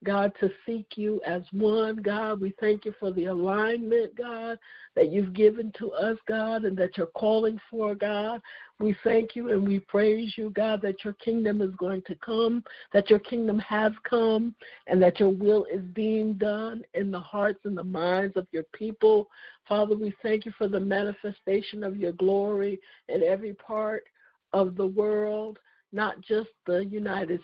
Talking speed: 180 wpm